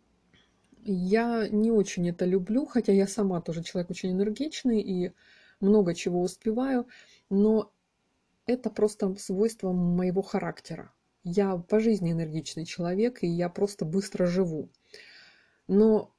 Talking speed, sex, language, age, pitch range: 120 wpm, female, Russian, 20-39, 175-210 Hz